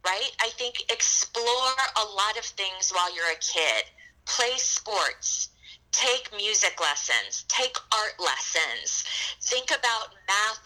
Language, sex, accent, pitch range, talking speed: English, female, American, 170-235 Hz, 130 wpm